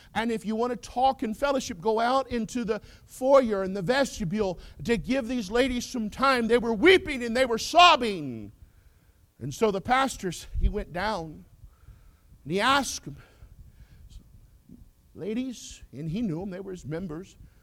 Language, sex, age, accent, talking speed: English, male, 50-69, American, 165 wpm